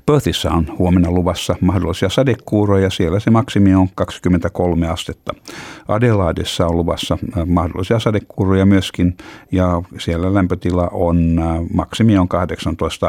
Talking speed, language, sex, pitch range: 120 wpm, Finnish, male, 85-105 Hz